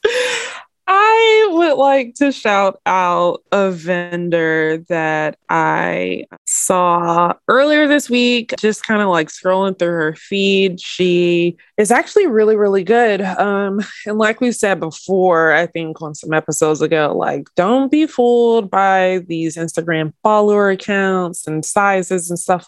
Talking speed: 140 wpm